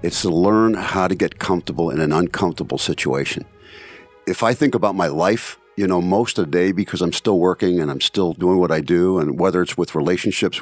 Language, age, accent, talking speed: English, 50-69, American, 220 wpm